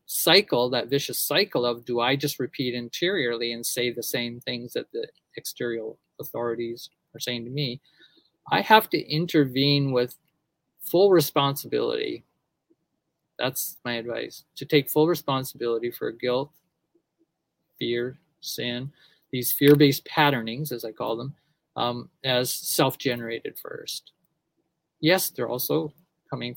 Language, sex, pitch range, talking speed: English, male, 120-155 Hz, 125 wpm